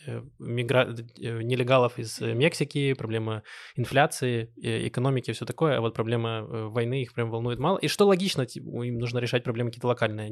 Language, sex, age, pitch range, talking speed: Russian, male, 20-39, 120-140 Hz, 150 wpm